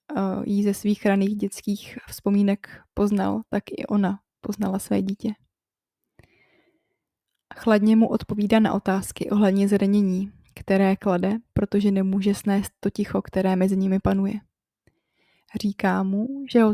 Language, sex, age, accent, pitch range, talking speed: Czech, female, 20-39, native, 195-215 Hz, 125 wpm